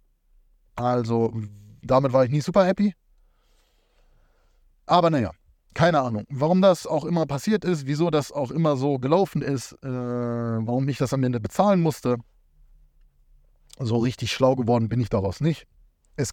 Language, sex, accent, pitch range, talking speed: German, male, German, 110-160 Hz, 150 wpm